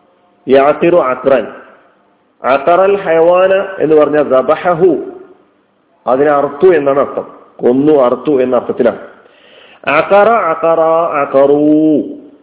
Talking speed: 85 wpm